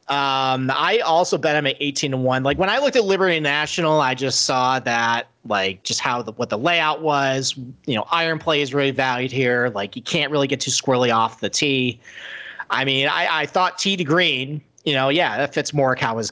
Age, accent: 40-59, American